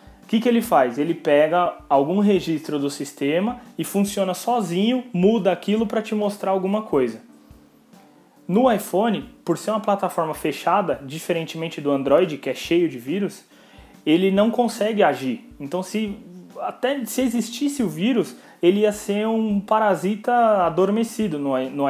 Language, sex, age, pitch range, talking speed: English, male, 20-39, 160-210 Hz, 145 wpm